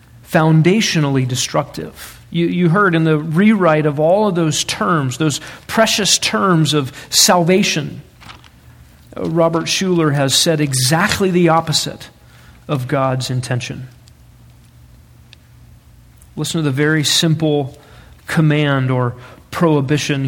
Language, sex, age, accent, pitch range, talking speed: English, male, 40-59, American, 130-170 Hz, 105 wpm